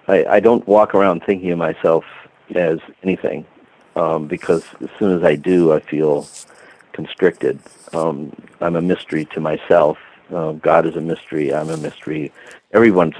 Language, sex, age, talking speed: English, male, 50-69, 160 wpm